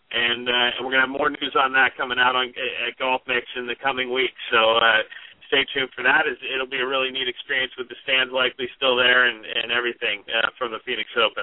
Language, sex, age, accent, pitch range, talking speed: English, male, 40-59, American, 140-195 Hz, 240 wpm